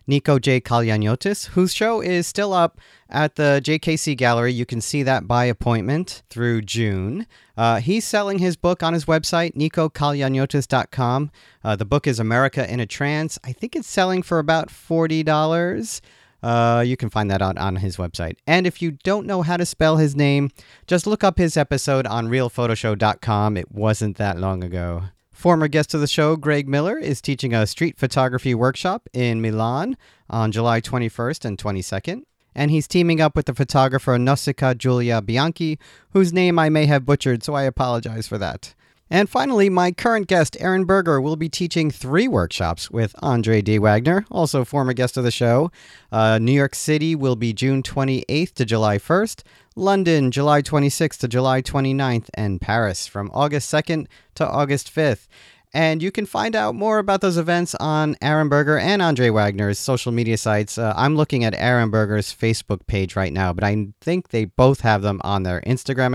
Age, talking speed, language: 40-59, 180 wpm, English